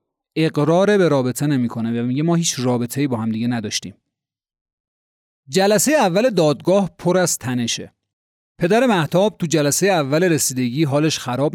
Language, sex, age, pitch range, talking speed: Persian, male, 30-49, 125-180 Hz, 140 wpm